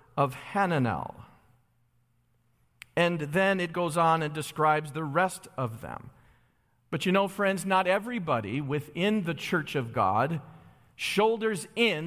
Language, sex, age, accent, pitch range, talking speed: English, male, 40-59, American, 160-230 Hz, 130 wpm